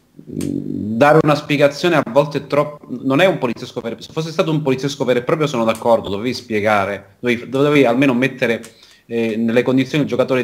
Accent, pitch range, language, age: native, 105-130 Hz, Italian, 30-49